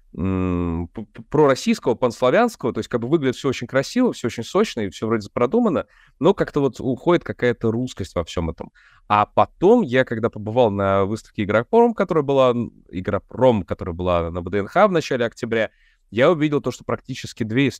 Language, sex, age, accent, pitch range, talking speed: Russian, male, 20-39, native, 100-125 Hz, 170 wpm